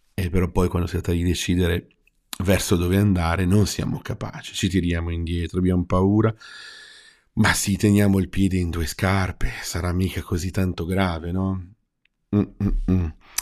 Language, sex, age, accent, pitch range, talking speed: Italian, male, 40-59, native, 90-115 Hz, 155 wpm